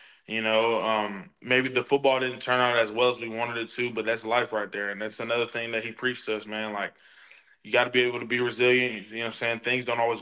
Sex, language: male, English